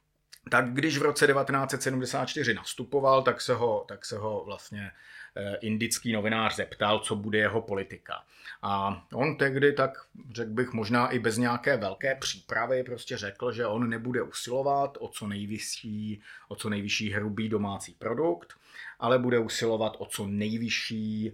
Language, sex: Czech, male